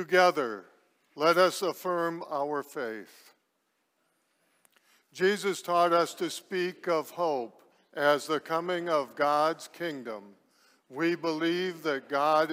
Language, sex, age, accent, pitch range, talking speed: English, male, 60-79, American, 135-160 Hz, 110 wpm